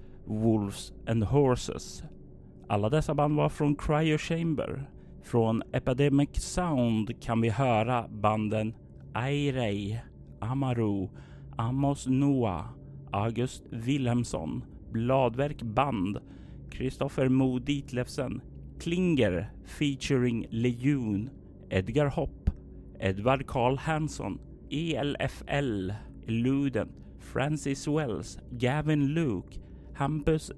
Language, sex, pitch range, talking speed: Swedish, male, 110-145 Hz, 80 wpm